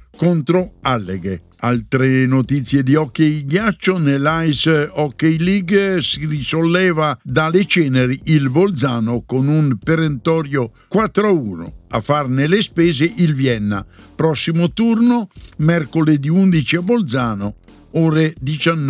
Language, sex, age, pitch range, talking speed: Italian, male, 60-79, 125-170 Hz, 110 wpm